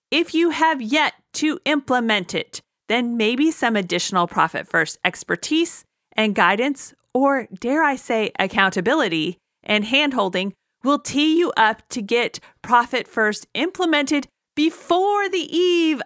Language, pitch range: English, 220-290 Hz